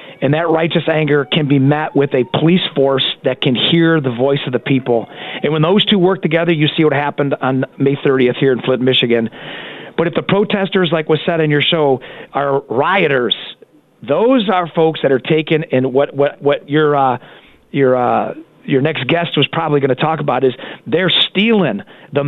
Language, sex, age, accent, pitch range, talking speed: English, male, 40-59, American, 135-170 Hz, 200 wpm